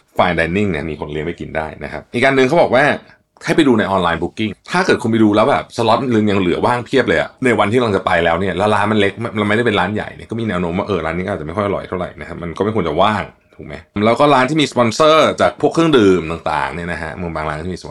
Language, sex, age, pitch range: Thai, male, 20-39, 85-120 Hz